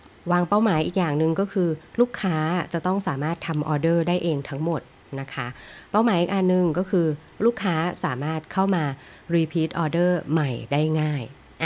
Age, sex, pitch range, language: 20-39, female, 135-175 Hz, Thai